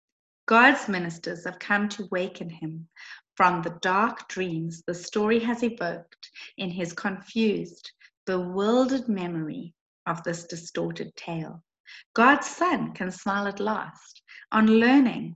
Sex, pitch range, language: female, 170-230 Hz, English